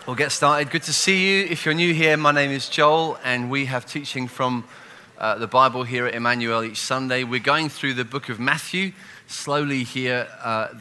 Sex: male